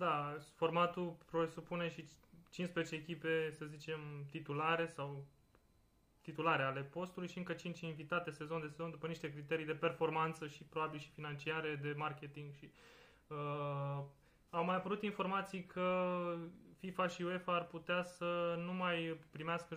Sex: male